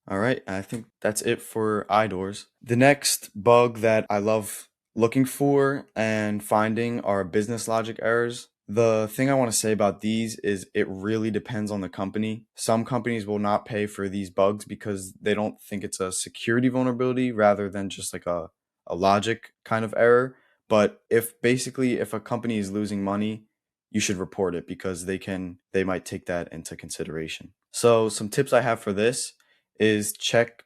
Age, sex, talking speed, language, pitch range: 20-39, male, 185 wpm, English, 95-115 Hz